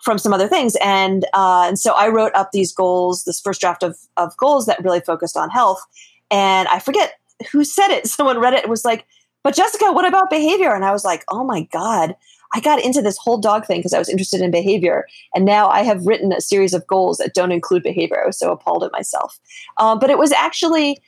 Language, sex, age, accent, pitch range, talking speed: English, female, 30-49, American, 185-235 Hz, 240 wpm